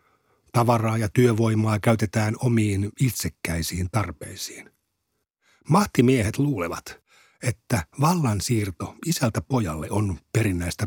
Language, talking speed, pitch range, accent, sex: Finnish, 85 wpm, 100-125 Hz, native, male